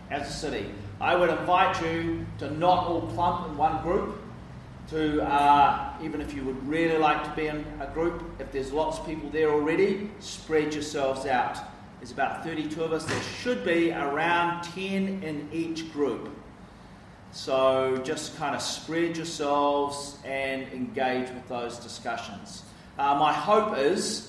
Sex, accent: male, Australian